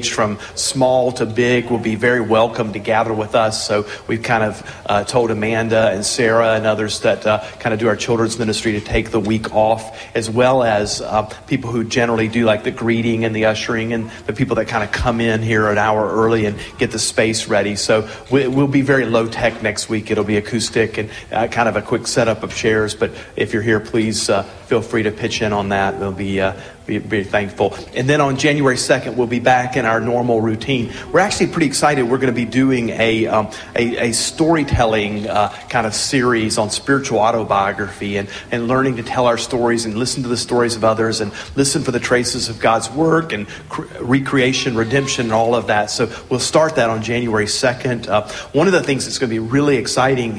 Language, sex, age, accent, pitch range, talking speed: English, male, 40-59, American, 110-125 Hz, 225 wpm